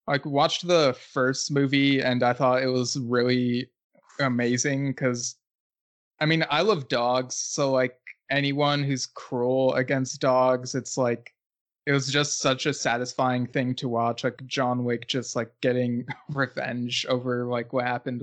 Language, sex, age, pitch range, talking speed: English, male, 20-39, 125-140 Hz, 155 wpm